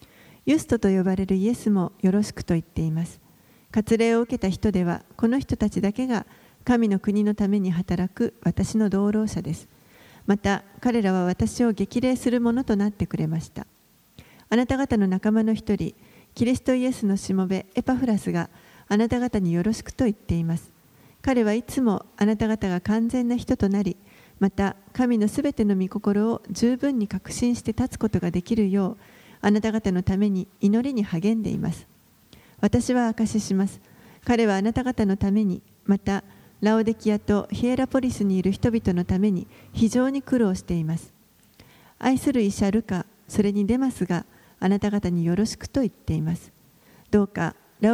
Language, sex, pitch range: Japanese, female, 190-235 Hz